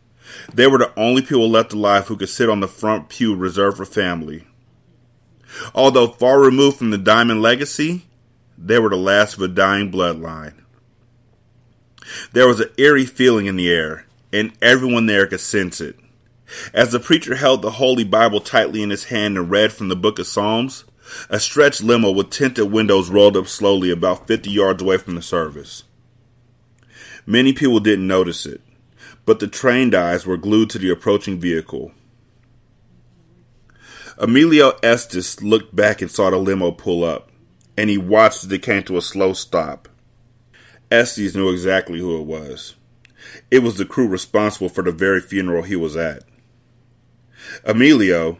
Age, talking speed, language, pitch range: 30-49, 165 wpm, English, 95-120 Hz